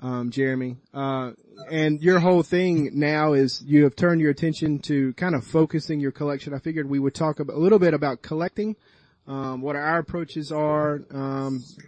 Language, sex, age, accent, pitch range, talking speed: English, male, 30-49, American, 130-160 Hz, 180 wpm